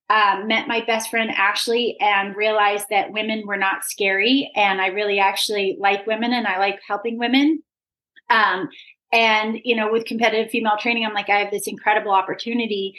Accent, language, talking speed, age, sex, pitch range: American, English, 180 wpm, 30-49, female, 215-275 Hz